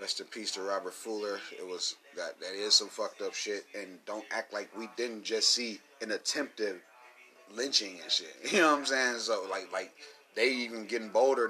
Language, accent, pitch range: English, American, 115-145 Hz